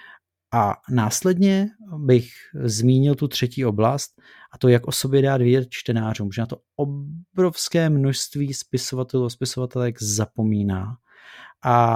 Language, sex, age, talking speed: Czech, male, 30-49, 125 wpm